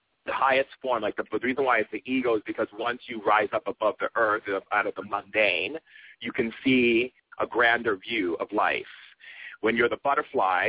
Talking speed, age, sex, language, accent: 200 wpm, 40-59, male, English, American